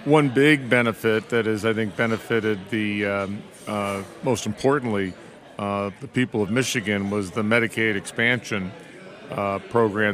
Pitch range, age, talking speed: 105-120 Hz, 40-59, 140 wpm